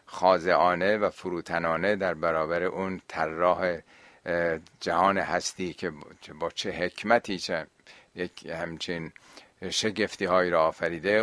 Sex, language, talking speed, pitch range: male, Persian, 100 wpm, 85-110 Hz